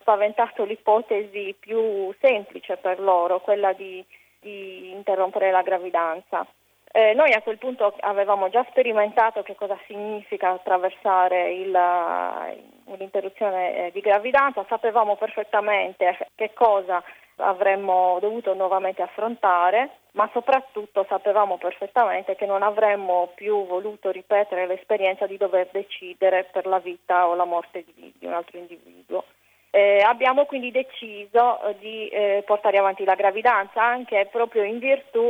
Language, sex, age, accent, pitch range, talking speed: Italian, female, 30-49, native, 185-220 Hz, 125 wpm